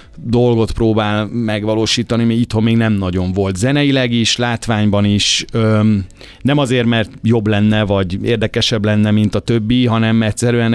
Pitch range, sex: 100-120 Hz, male